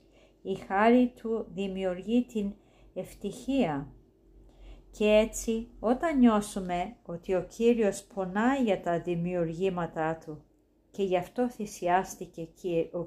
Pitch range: 180-230 Hz